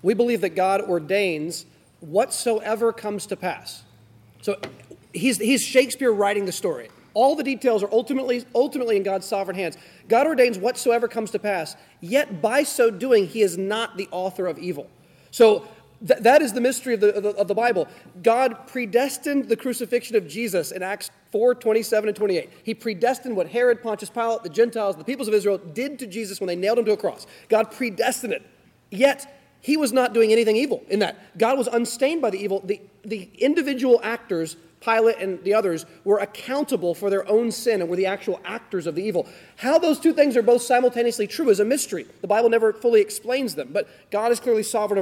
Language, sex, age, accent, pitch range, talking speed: English, male, 30-49, American, 195-240 Hz, 195 wpm